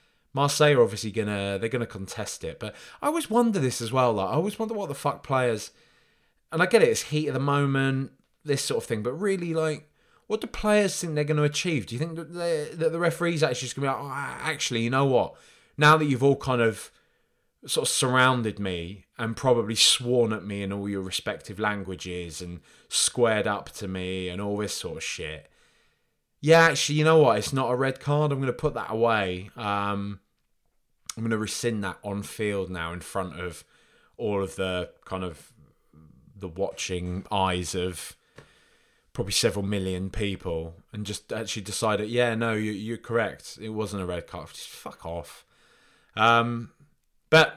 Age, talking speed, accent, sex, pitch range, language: 20-39, 195 wpm, British, male, 100-145 Hz, English